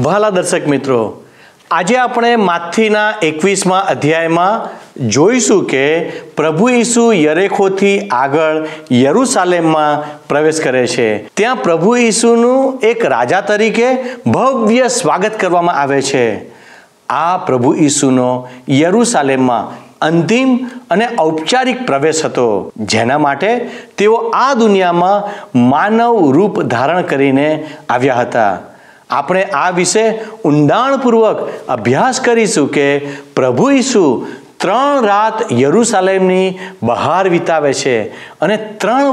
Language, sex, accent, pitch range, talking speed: Gujarati, male, native, 150-230 Hz, 100 wpm